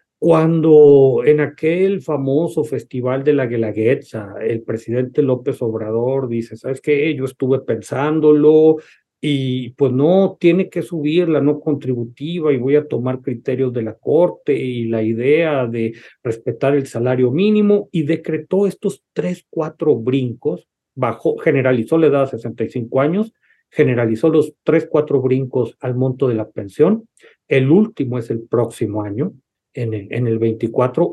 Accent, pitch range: Mexican, 125-170 Hz